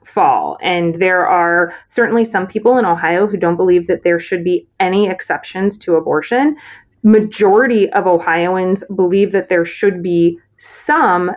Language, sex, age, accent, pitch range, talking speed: English, female, 20-39, American, 170-200 Hz, 155 wpm